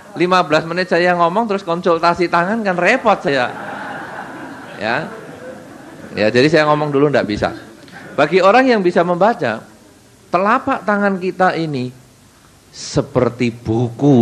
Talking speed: 120 wpm